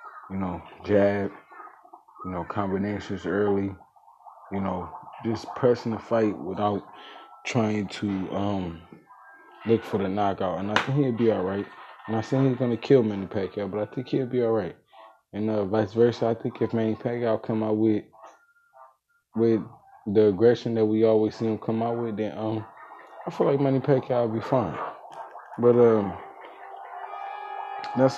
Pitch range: 100-115 Hz